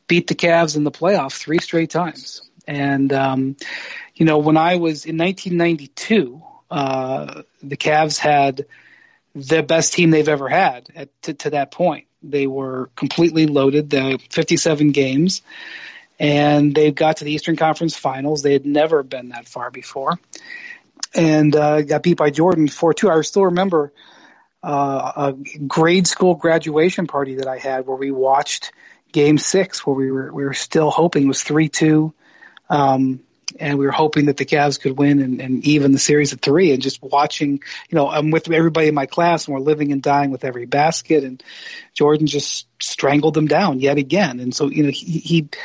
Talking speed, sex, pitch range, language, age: 185 wpm, male, 140-165 Hz, English, 40-59